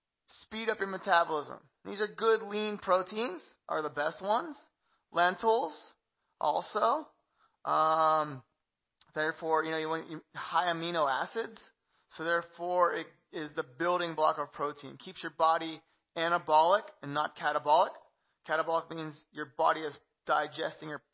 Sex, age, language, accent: male, 20-39, English, American